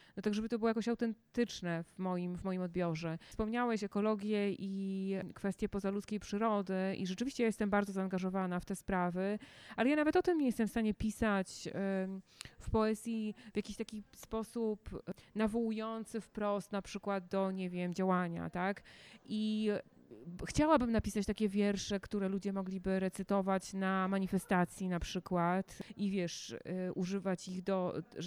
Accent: native